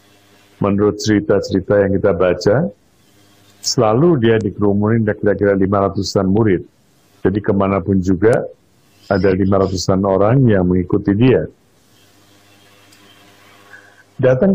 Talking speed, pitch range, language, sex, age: 90 wpm, 100-130 Hz, Indonesian, male, 50-69